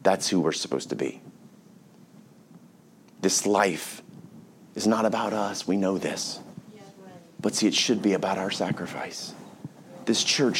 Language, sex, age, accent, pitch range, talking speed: English, male, 30-49, American, 115-155 Hz, 140 wpm